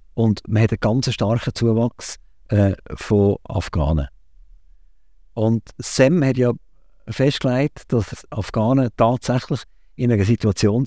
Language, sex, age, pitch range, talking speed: German, male, 50-69, 90-125 Hz, 115 wpm